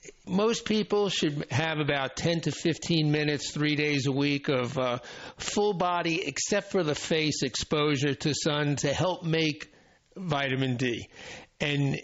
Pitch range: 140-180 Hz